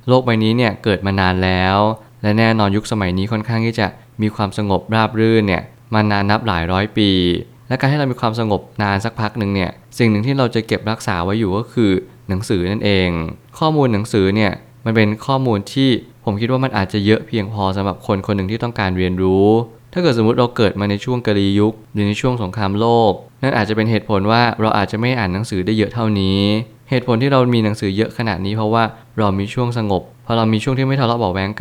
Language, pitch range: Thai, 100-115 Hz